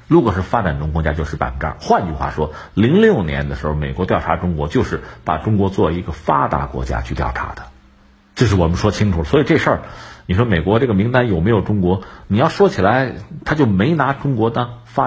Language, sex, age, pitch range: Chinese, male, 50-69, 80-130 Hz